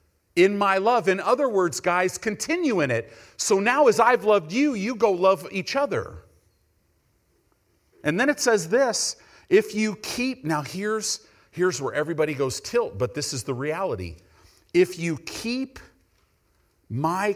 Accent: American